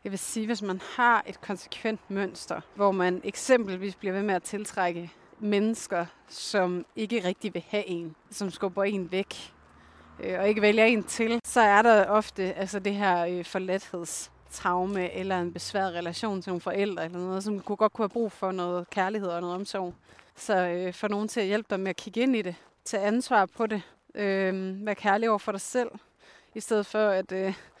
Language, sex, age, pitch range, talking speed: Danish, female, 30-49, 190-225 Hz, 205 wpm